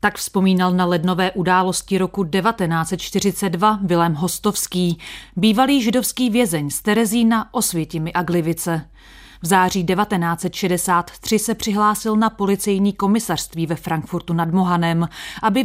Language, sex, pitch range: Czech, female, 165-215 Hz